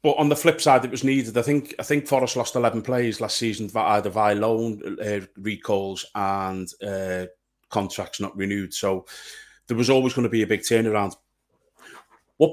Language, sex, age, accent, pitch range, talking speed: English, male, 30-49, British, 105-135 Hz, 185 wpm